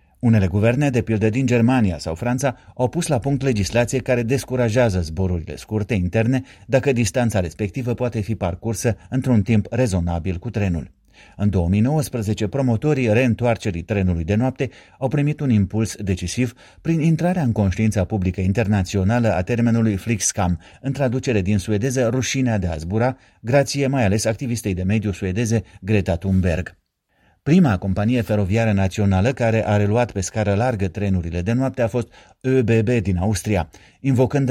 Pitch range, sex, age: 100-125 Hz, male, 30-49